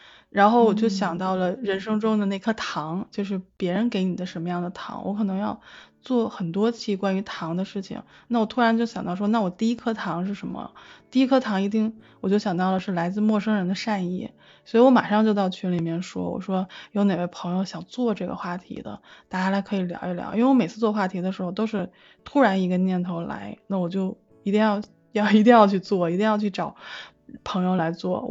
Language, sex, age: Chinese, female, 20-39